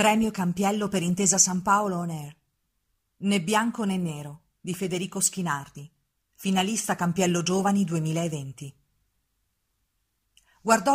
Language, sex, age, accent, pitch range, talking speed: Italian, female, 40-59, native, 155-215 Hz, 110 wpm